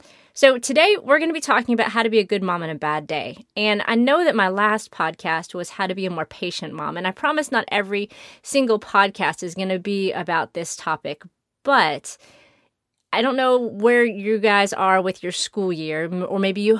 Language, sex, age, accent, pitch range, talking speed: English, female, 30-49, American, 175-230 Hz, 220 wpm